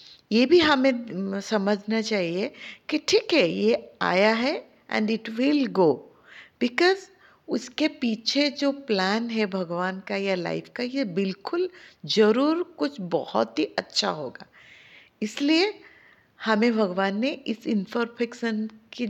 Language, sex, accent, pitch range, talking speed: Hindi, female, native, 185-235 Hz, 130 wpm